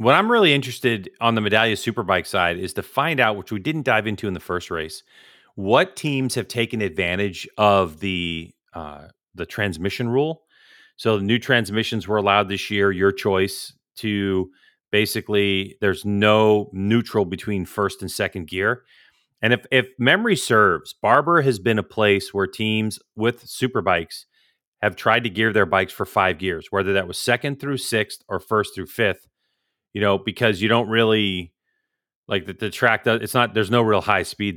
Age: 30-49